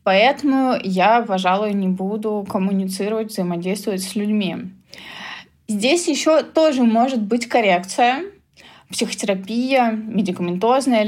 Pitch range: 195-235 Hz